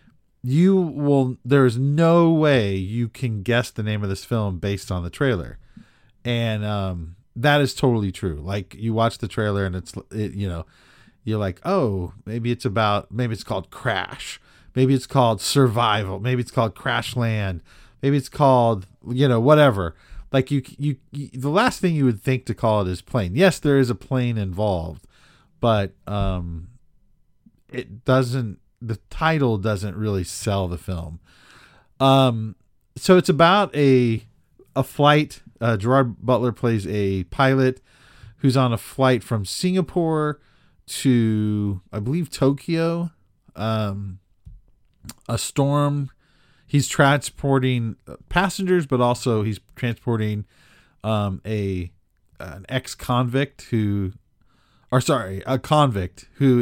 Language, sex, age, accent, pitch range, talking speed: English, male, 40-59, American, 100-135 Hz, 140 wpm